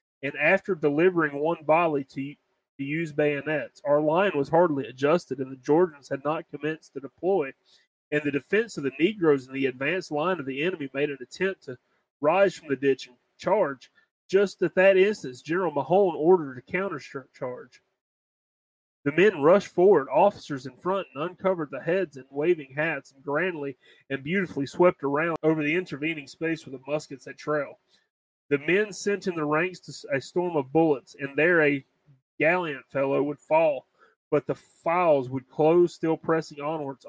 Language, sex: English, male